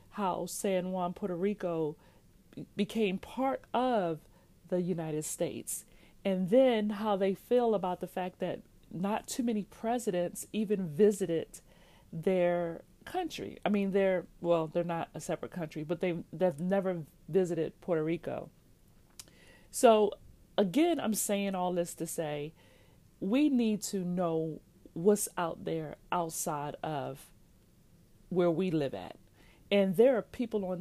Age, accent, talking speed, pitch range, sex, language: 40-59, American, 135 wpm, 175-210 Hz, female, English